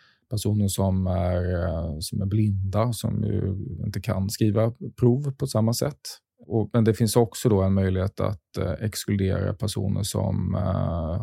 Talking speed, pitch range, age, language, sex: 155 wpm, 95-110 Hz, 20-39, Swedish, male